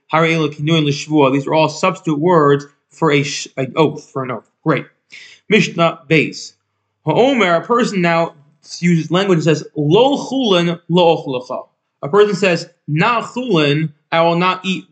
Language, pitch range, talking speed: English, 145-175 Hz, 125 wpm